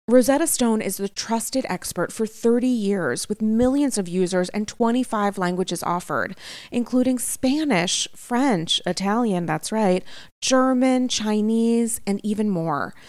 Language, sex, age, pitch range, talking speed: English, female, 30-49, 200-255 Hz, 130 wpm